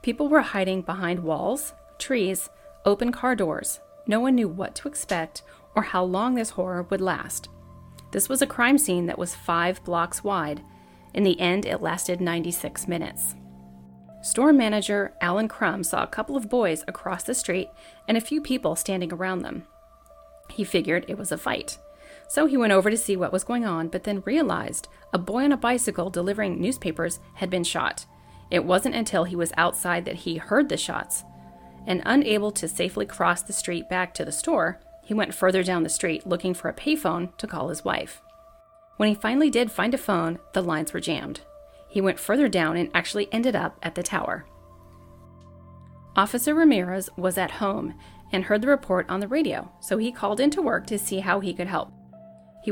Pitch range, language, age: 175-230 Hz, English, 30-49